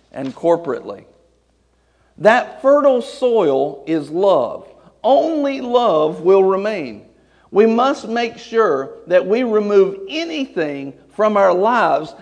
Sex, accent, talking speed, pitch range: male, American, 110 wpm, 185-255 Hz